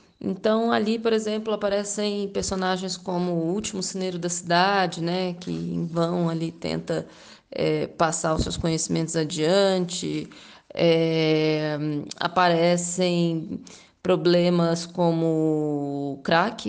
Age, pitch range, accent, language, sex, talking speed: 20-39, 165-190 Hz, Brazilian, Portuguese, female, 110 wpm